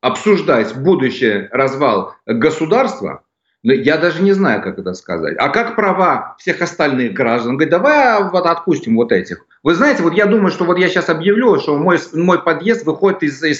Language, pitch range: Russian, 150-205 Hz